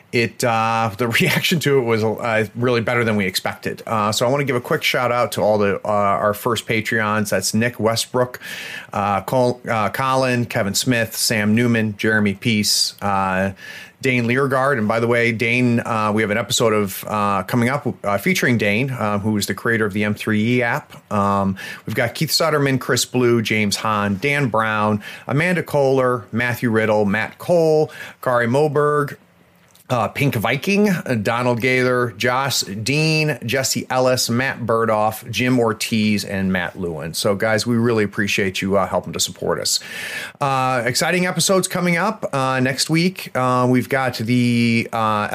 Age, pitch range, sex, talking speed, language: 30-49, 110-130 Hz, male, 175 wpm, English